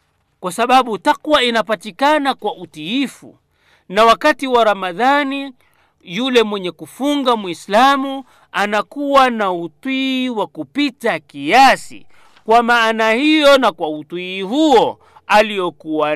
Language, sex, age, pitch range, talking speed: Swahili, male, 50-69, 155-235 Hz, 105 wpm